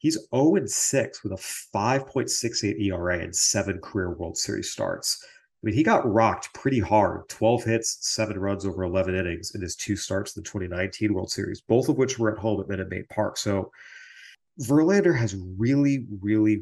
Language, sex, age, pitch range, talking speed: English, male, 30-49, 95-125 Hz, 175 wpm